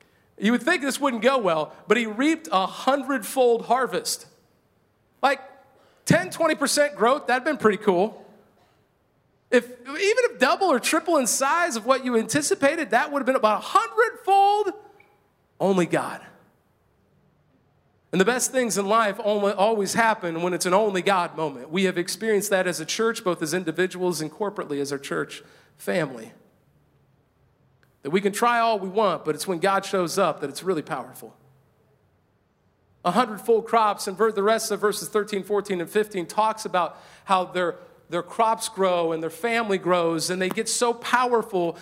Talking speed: 170 wpm